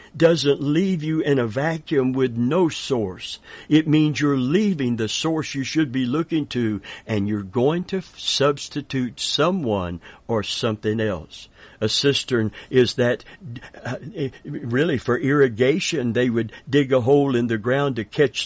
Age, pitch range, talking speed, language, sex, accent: 60-79, 110-140 Hz, 155 wpm, English, male, American